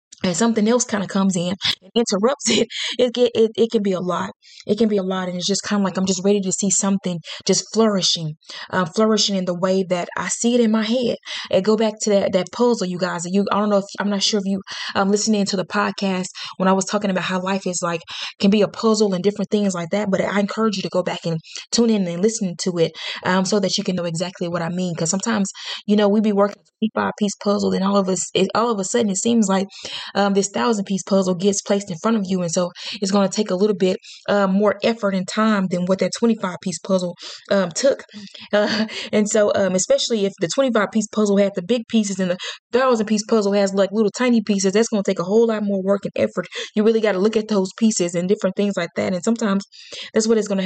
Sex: female